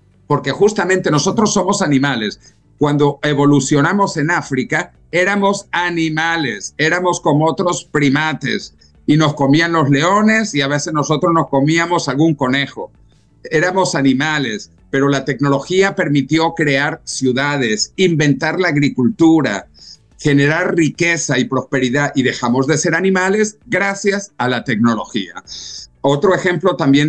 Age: 50-69